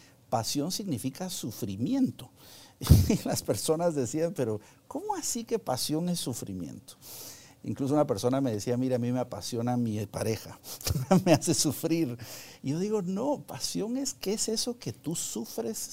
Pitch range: 120-160 Hz